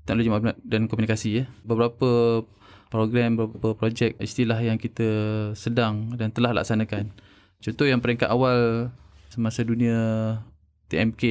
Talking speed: 110 wpm